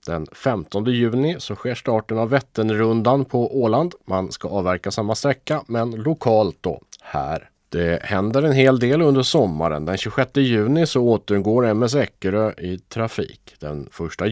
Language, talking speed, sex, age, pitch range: Swedish, 155 wpm, male, 30-49, 90-110 Hz